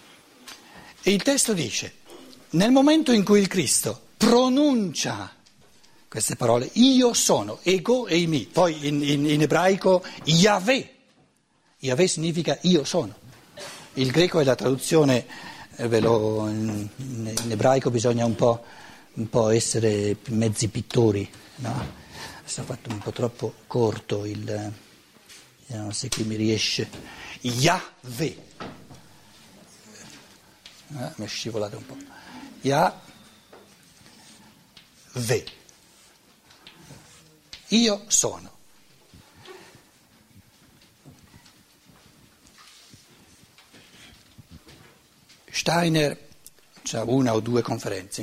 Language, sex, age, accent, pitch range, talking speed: Italian, male, 60-79, native, 115-175 Hz, 90 wpm